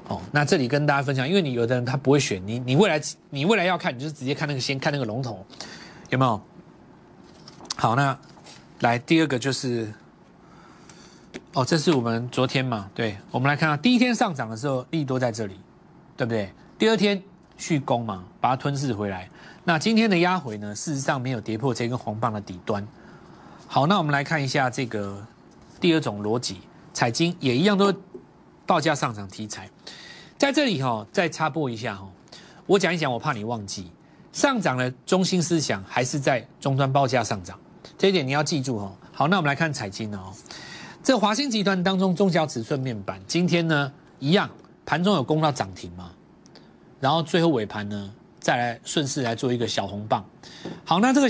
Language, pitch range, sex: Chinese, 115-165 Hz, male